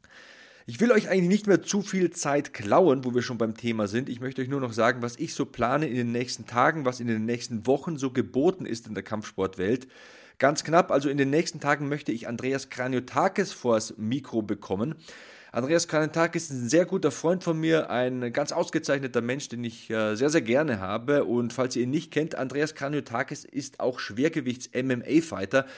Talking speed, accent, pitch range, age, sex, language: 200 wpm, German, 115-145 Hz, 30-49, male, German